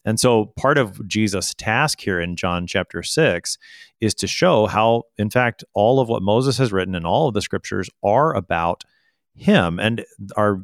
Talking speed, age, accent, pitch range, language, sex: 185 wpm, 30-49, American, 95-125 Hz, English, male